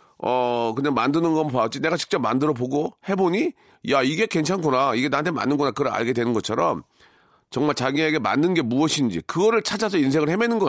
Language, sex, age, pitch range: Korean, male, 40-59, 120-175 Hz